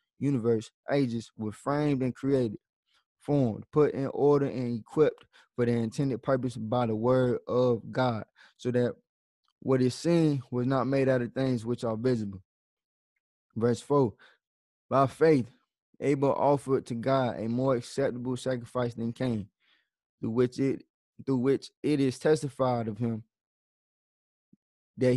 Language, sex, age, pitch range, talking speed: English, male, 20-39, 120-140 Hz, 145 wpm